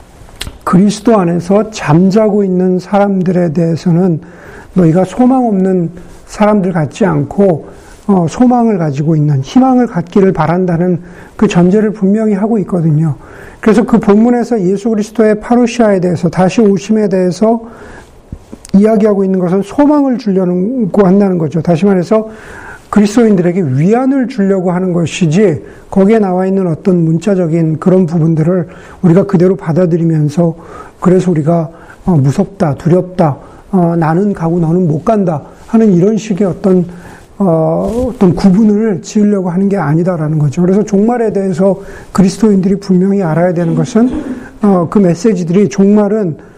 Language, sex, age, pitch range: Korean, male, 50-69, 175-210 Hz